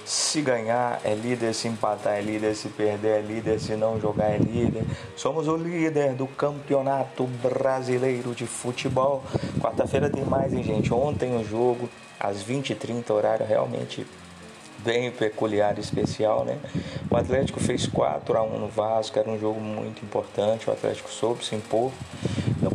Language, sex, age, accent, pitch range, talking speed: Portuguese, male, 20-39, Brazilian, 110-135 Hz, 160 wpm